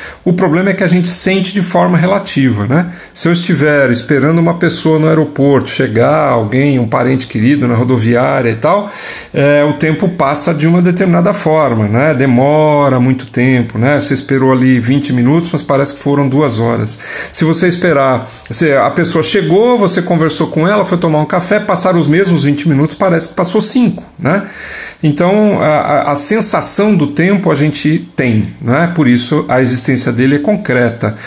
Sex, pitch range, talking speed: male, 135-180 Hz, 180 wpm